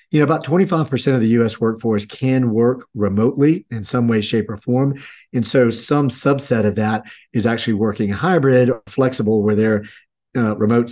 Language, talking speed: English, 180 wpm